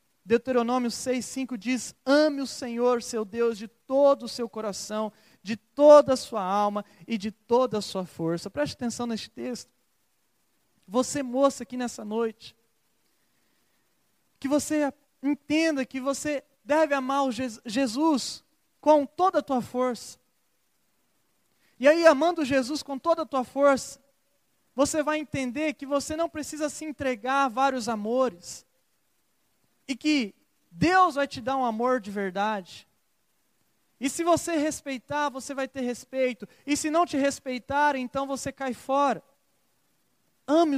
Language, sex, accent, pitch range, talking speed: Portuguese, male, Brazilian, 230-280 Hz, 145 wpm